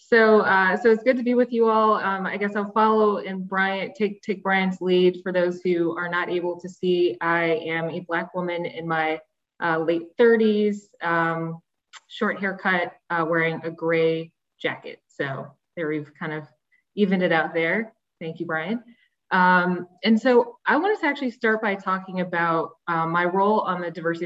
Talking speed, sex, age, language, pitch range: 190 wpm, female, 20-39, English, 160-195 Hz